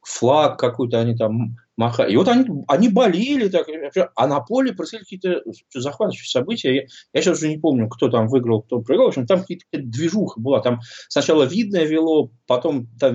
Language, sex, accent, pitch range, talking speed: Russian, male, native, 140-230 Hz, 190 wpm